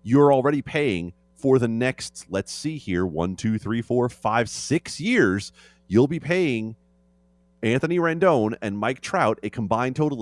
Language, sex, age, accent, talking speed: English, male, 30-49, American, 160 wpm